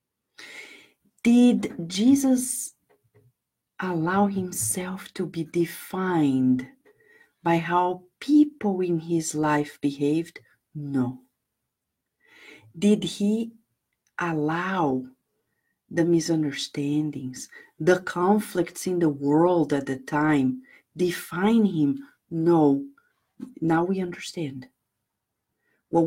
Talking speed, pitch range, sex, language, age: 80 wpm, 145-215 Hz, female, English, 50-69